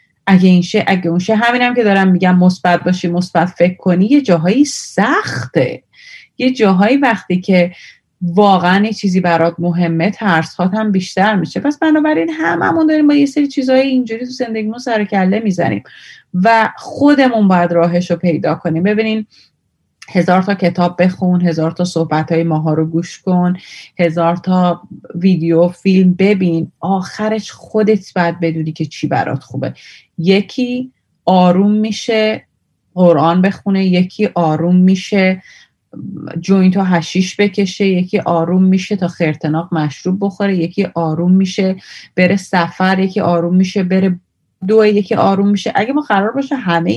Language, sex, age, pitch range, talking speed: Persian, female, 30-49, 175-220 Hz, 145 wpm